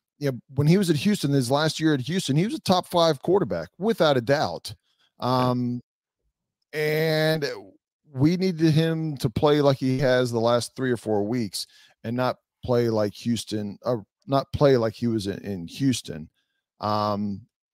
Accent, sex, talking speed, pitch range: American, male, 180 wpm, 120-155 Hz